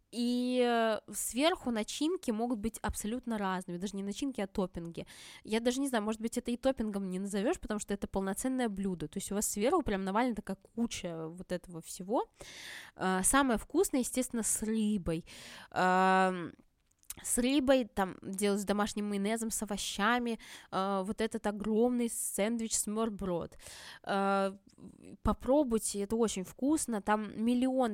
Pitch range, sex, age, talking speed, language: 195-245 Hz, female, 20-39, 145 wpm, Russian